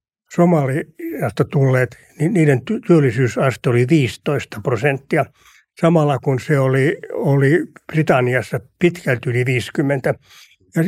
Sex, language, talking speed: male, Finnish, 100 wpm